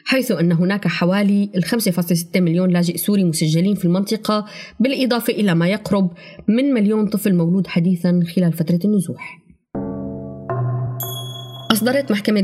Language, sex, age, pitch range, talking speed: Arabic, female, 20-39, 180-230 Hz, 125 wpm